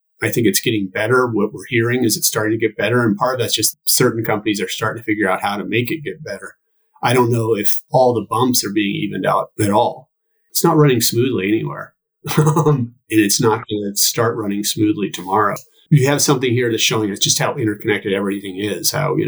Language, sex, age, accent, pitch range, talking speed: English, male, 30-49, American, 105-130 Hz, 225 wpm